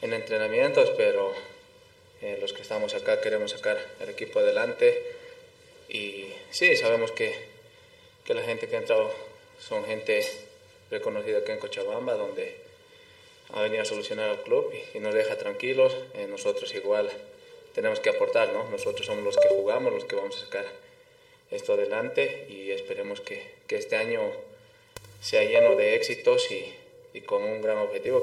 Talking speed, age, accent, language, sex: 160 wpm, 20-39, Spanish, Spanish, male